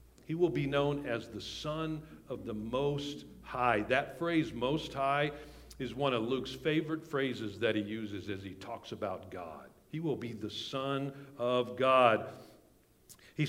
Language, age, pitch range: English, 60-79, 115-145 Hz